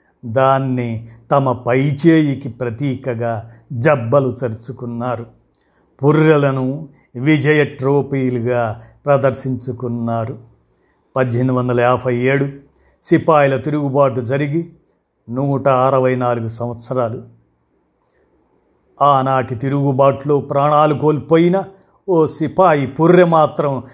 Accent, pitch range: native, 125-150 Hz